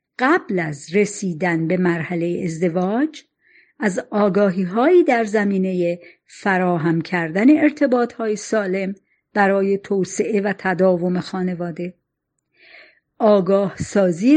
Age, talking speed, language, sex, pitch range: 50-69, 90 wpm, Persian, female, 175-240 Hz